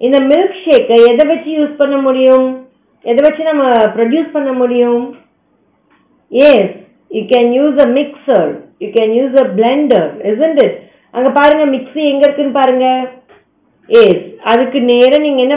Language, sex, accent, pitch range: Tamil, female, native, 225-285 Hz